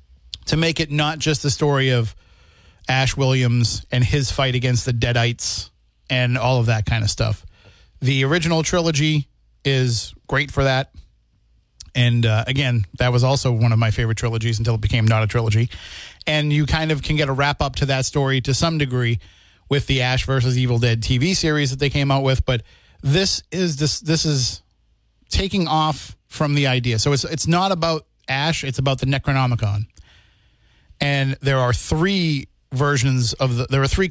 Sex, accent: male, American